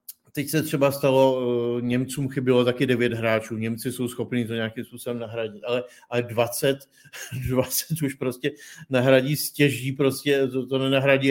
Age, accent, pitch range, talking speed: 50-69, native, 120-140 Hz, 150 wpm